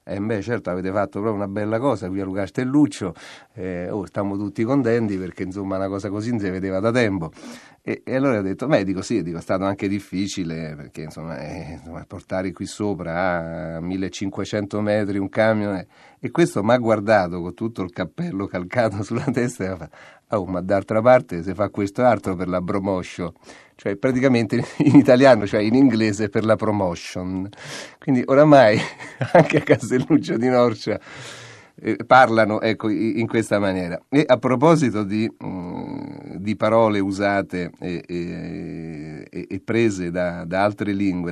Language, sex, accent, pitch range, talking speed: Italian, male, native, 90-110 Hz, 175 wpm